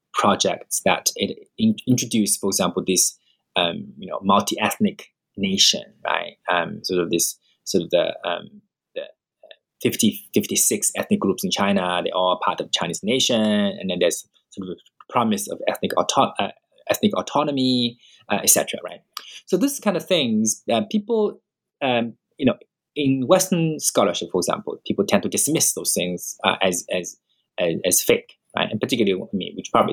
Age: 20-39